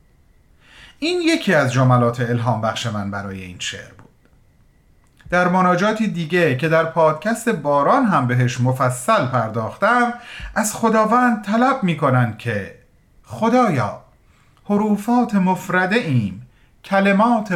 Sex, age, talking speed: male, 40-59, 110 wpm